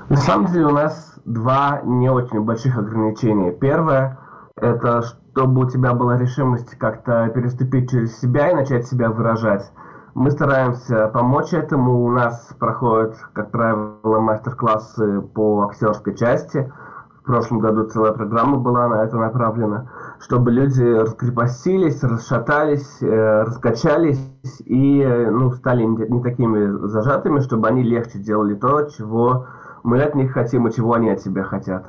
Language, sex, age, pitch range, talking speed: Russian, male, 20-39, 110-130 Hz, 145 wpm